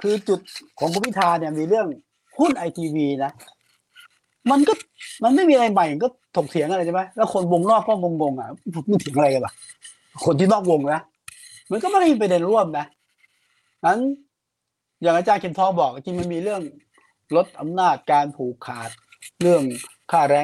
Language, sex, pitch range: Thai, male, 165-250 Hz